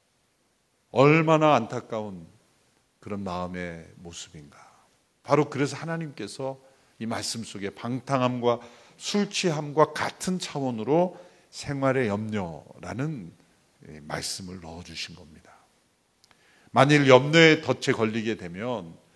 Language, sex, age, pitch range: Korean, male, 50-69, 105-155 Hz